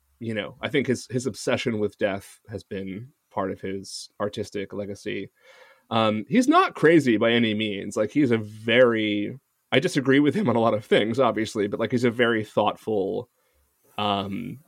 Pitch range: 110-170 Hz